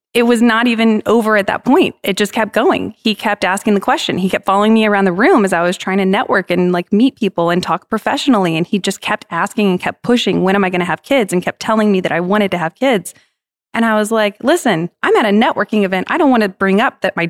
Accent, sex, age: American, female, 20-39